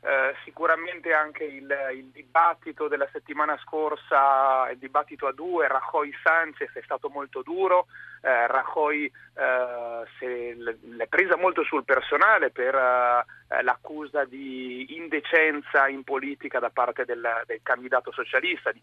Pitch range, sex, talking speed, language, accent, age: 130-180 Hz, male, 135 wpm, Italian, native, 40-59